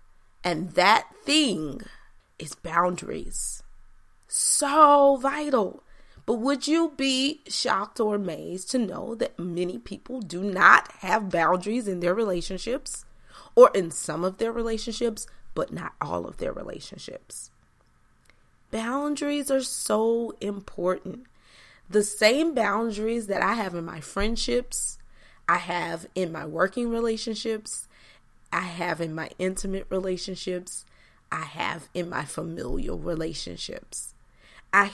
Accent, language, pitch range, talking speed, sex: American, English, 175-245 Hz, 120 wpm, female